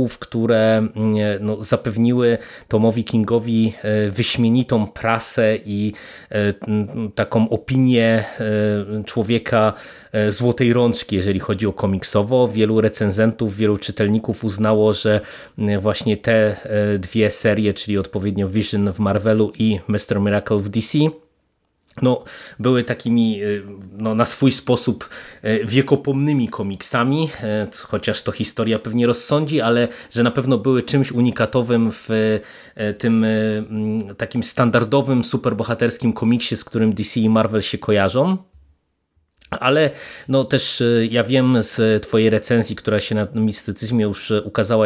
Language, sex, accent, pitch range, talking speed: Polish, male, native, 105-120 Hz, 110 wpm